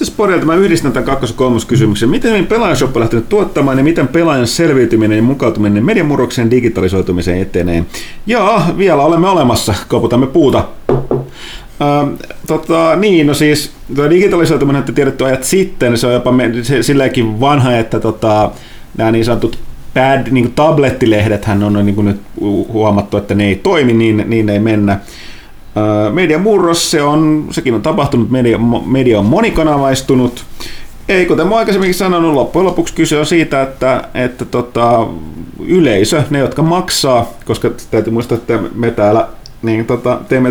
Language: Finnish